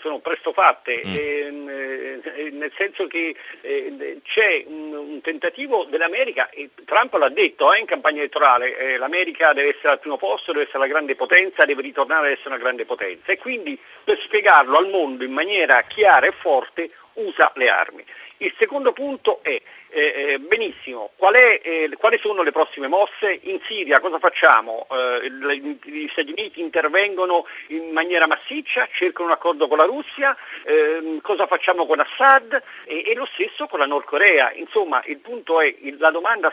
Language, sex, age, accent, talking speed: Italian, male, 50-69, native, 170 wpm